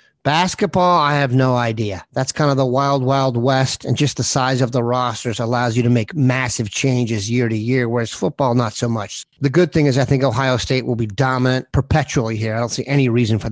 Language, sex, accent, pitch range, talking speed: English, male, American, 120-140 Hz, 230 wpm